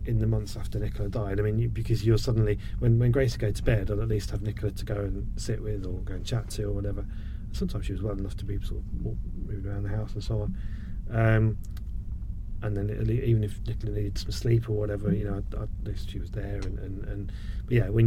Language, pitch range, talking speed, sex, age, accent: English, 100-110 Hz, 250 wpm, male, 30-49, British